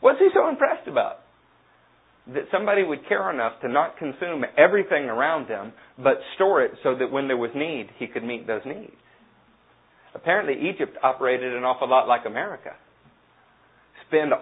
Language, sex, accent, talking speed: English, male, American, 160 wpm